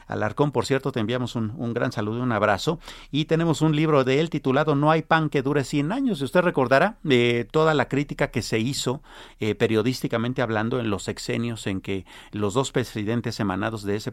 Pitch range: 110-155 Hz